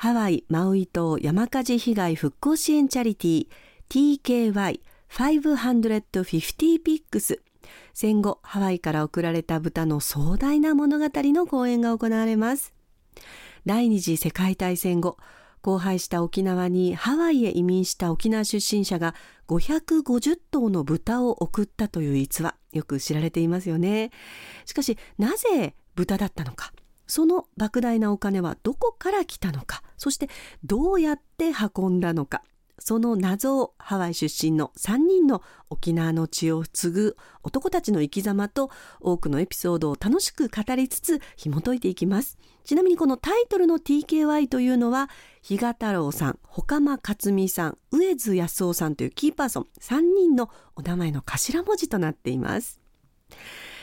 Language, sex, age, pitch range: Japanese, female, 40-59, 170-280 Hz